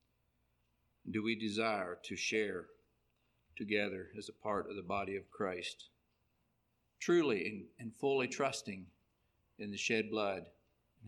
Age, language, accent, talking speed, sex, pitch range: 50-69, English, American, 125 wpm, male, 95-120 Hz